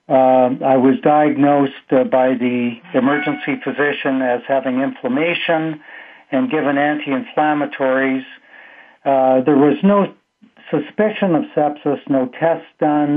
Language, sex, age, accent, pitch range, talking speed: English, male, 60-79, American, 130-155 Hz, 115 wpm